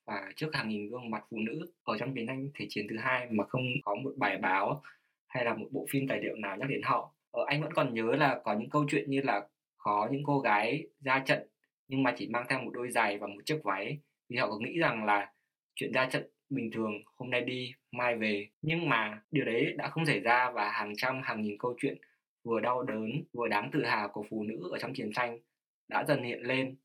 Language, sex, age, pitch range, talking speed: Vietnamese, male, 20-39, 115-145 Hz, 250 wpm